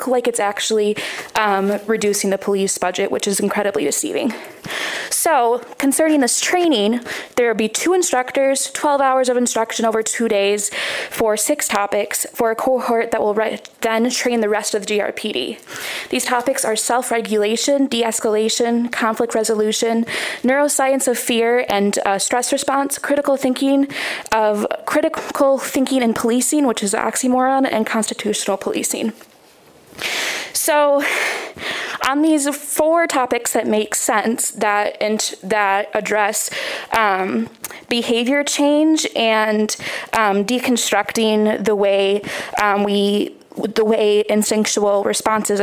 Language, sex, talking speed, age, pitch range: English, female, 130 wpm, 20-39, 210-265 Hz